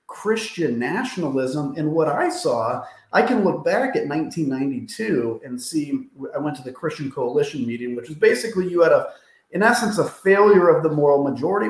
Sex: male